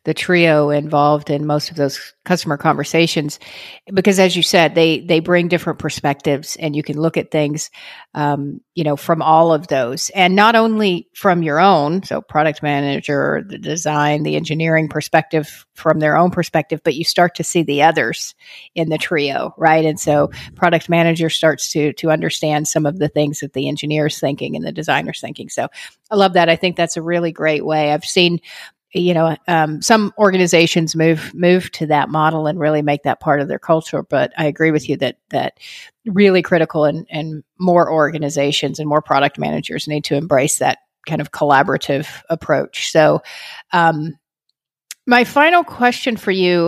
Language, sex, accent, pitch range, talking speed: English, female, American, 150-175 Hz, 185 wpm